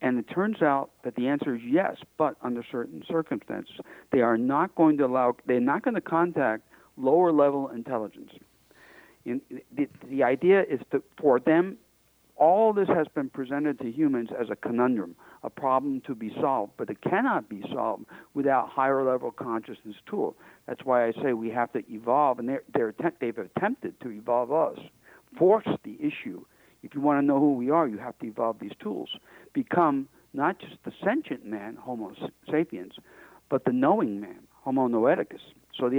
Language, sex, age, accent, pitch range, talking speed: English, male, 60-79, American, 120-165 Hz, 180 wpm